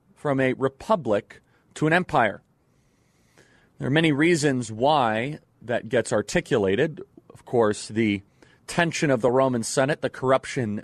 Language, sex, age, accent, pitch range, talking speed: English, male, 30-49, American, 115-145 Hz, 135 wpm